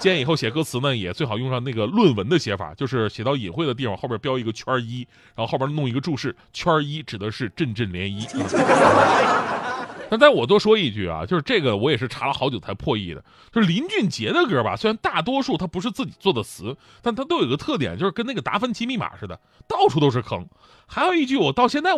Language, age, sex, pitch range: Chinese, 30-49, male, 120-185 Hz